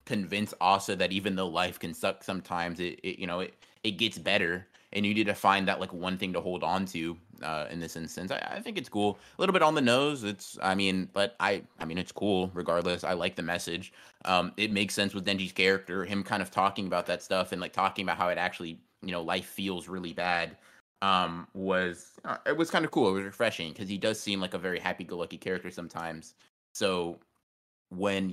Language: English